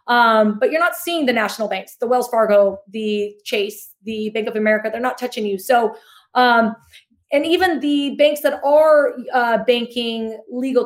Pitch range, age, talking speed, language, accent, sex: 225-285 Hz, 30-49, 175 wpm, English, American, female